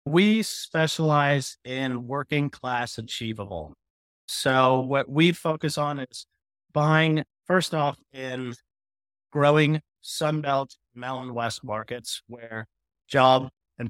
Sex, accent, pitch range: male, American, 105-135 Hz